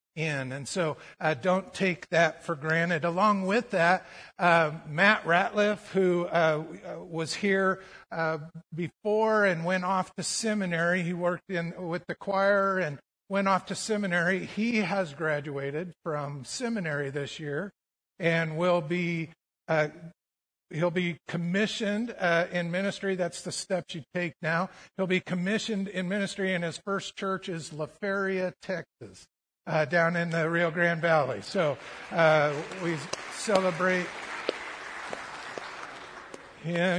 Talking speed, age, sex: 135 wpm, 50-69, male